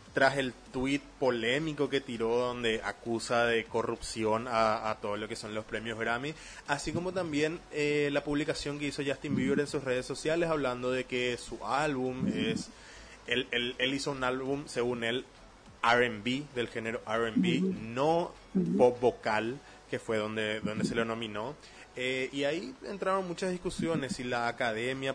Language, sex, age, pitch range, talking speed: Spanish, male, 20-39, 110-145 Hz, 165 wpm